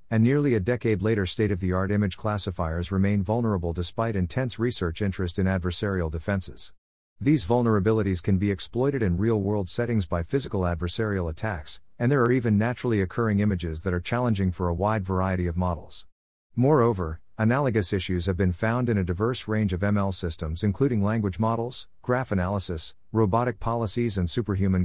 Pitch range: 90-115 Hz